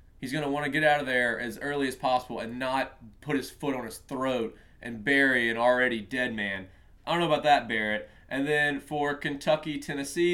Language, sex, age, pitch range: English, male, 30-49, 120-150 Hz